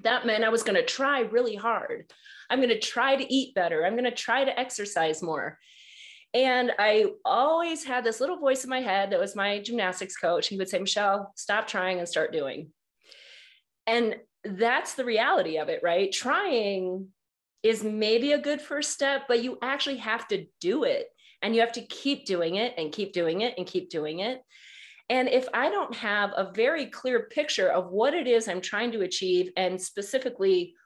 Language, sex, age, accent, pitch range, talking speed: English, female, 30-49, American, 190-260 Hz, 195 wpm